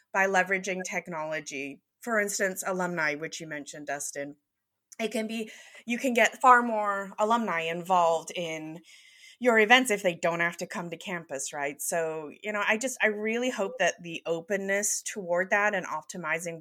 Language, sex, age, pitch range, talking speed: English, female, 30-49, 155-205 Hz, 170 wpm